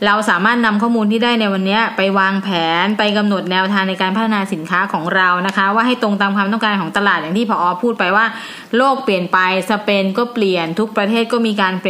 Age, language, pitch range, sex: 20-39, Thai, 190-230 Hz, female